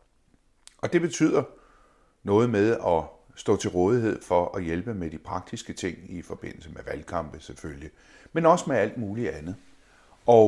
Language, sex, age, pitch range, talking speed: Danish, male, 60-79, 90-125 Hz, 160 wpm